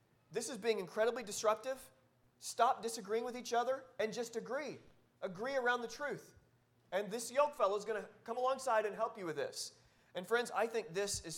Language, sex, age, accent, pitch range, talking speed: English, male, 30-49, American, 160-225 Hz, 195 wpm